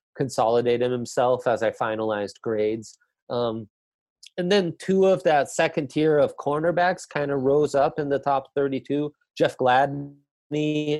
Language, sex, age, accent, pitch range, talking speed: English, male, 30-49, American, 115-150 Hz, 140 wpm